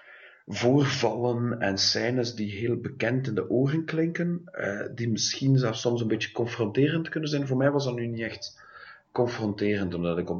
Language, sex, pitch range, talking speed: English, male, 95-120 Hz, 180 wpm